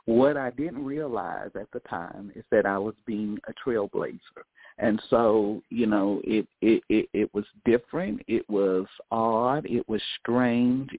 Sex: male